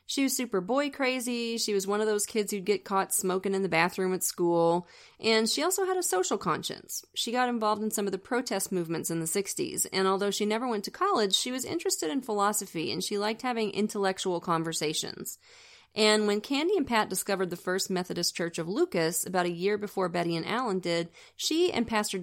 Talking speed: 215 wpm